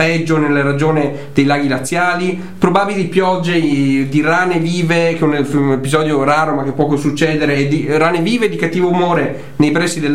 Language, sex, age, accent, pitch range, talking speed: Italian, male, 30-49, native, 140-185 Hz, 175 wpm